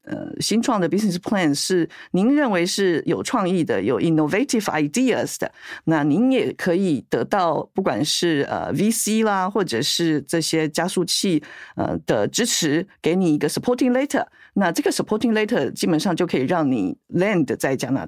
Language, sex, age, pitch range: Chinese, female, 50-69, 150-205 Hz